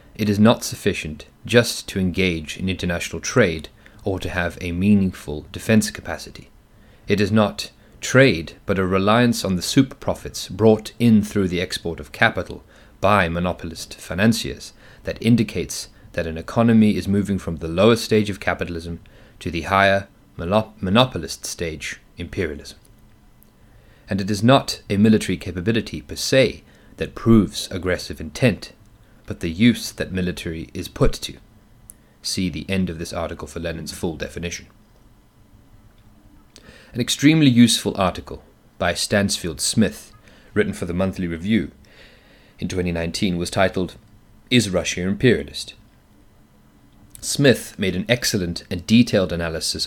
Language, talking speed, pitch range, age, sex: English, 140 wpm, 85-110 Hz, 30-49, male